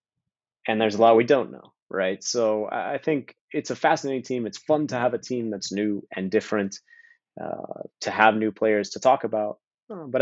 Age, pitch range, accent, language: 30-49, 100-125 Hz, American, English